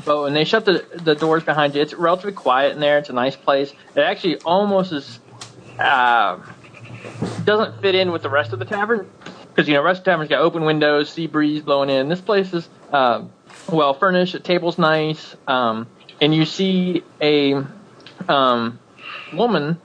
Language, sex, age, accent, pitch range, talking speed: English, male, 30-49, American, 145-190 Hz, 190 wpm